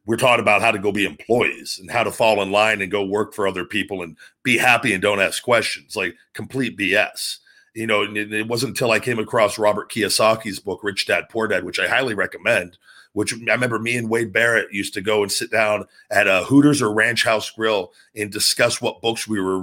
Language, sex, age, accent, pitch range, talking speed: English, male, 40-59, American, 100-115 Hz, 230 wpm